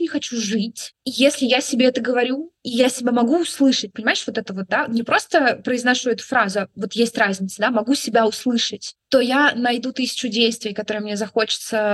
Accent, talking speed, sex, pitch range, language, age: native, 190 wpm, female, 205-235 Hz, Russian, 20-39